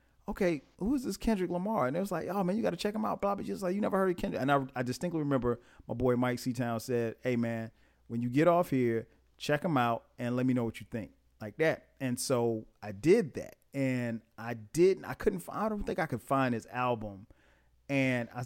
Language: English